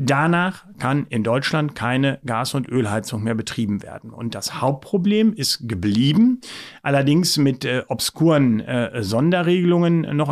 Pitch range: 120-160 Hz